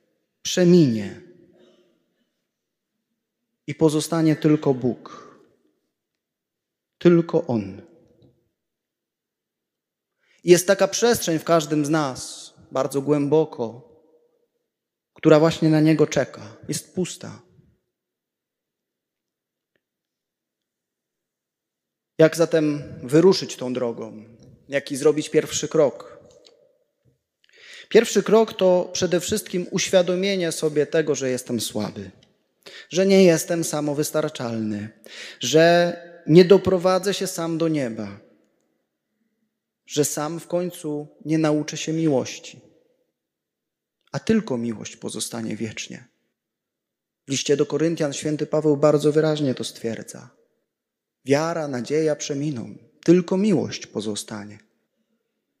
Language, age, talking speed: Polish, 30-49, 90 wpm